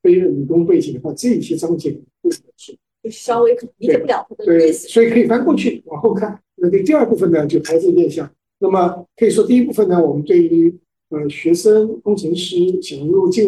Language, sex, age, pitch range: Chinese, male, 50-69, 155-245 Hz